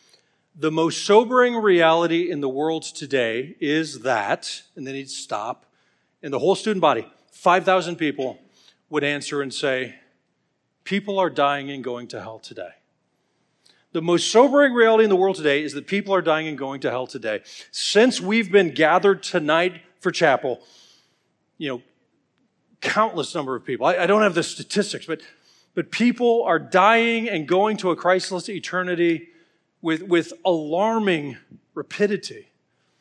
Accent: American